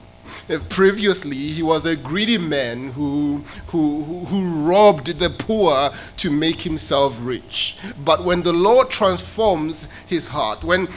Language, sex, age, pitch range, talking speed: English, male, 30-49, 130-195 Hz, 130 wpm